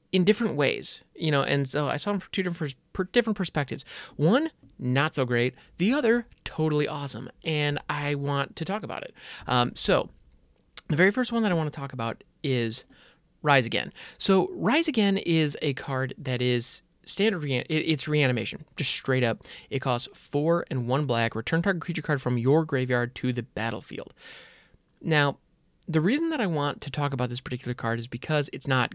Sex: male